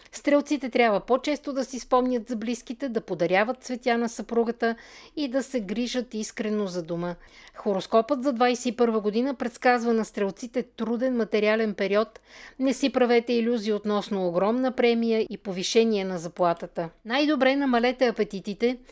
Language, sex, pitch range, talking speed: Bulgarian, female, 205-255 Hz, 140 wpm